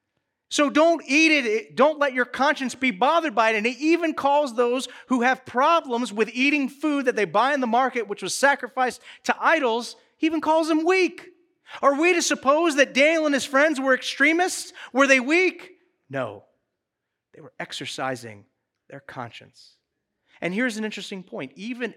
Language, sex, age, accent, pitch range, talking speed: English, male, 30-49, American, 200-285 Hz, 180 wpm